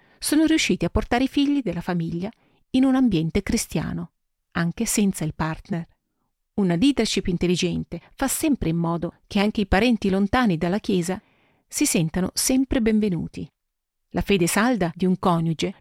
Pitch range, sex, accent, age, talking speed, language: 170-225 Hz, female, native, 40-59, 150 wpm, Italian